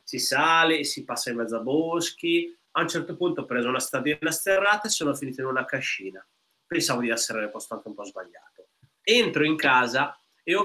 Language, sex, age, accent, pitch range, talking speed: Italian, male, 30-49, native, 125-175 Hz, 210 wpm